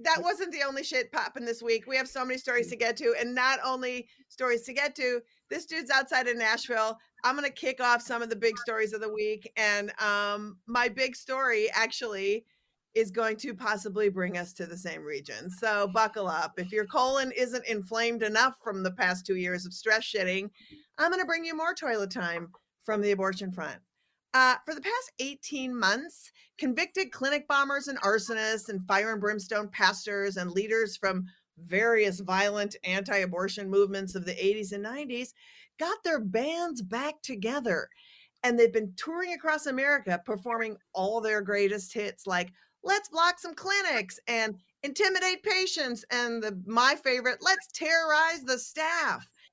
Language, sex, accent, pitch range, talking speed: English, female, American, 205-285 Hz, 175 wpm